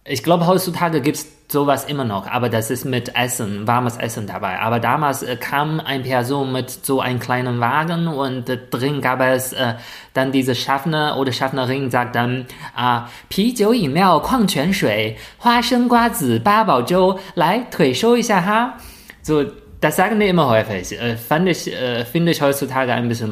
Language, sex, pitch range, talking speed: German, male, 120-165 Hz, 150 wpm